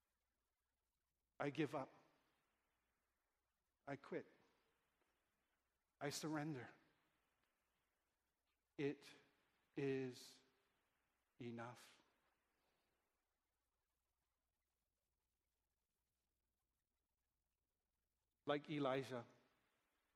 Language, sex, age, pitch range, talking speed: English, male, 50-69, 125-170 Hz, 35 wpm